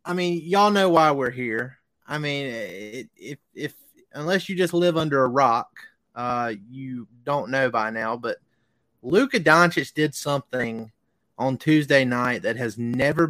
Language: English